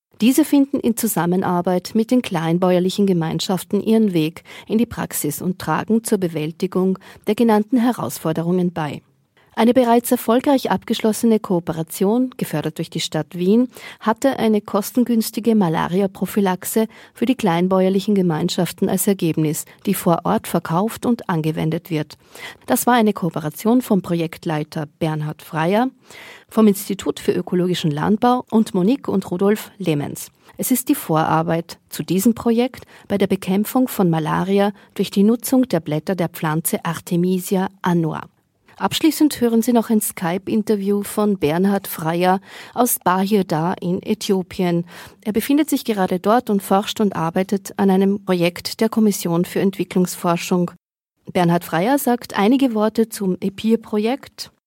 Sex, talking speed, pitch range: female, 135 wpm, 175-225 Hz